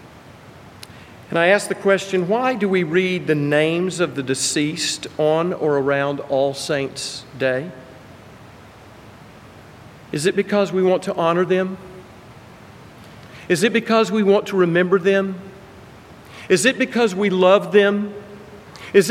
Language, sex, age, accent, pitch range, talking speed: English, male, 50-69, American, 135-195 Hz, 135 wpm